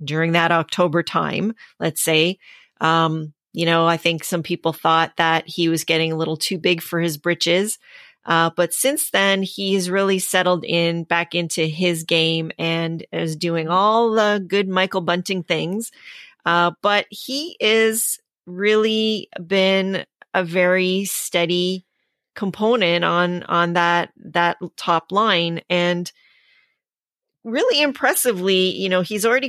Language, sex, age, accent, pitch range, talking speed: English, female, 30-49, American, 170-205 Hz, 140 wpm